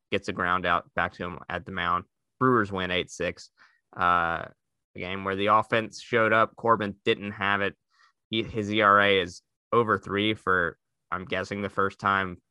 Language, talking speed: English, 175 wpm